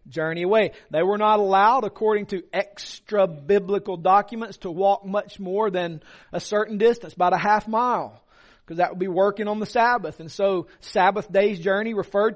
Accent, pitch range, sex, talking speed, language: American, 175-220 Hz, male, 180 wpm, English